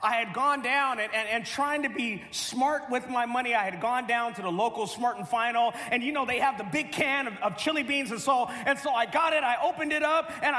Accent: American